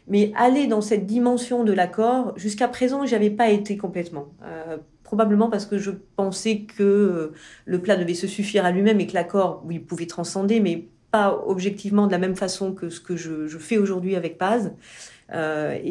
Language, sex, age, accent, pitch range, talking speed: English, female, 40-59, French, 170-220 Hz, 190 wpm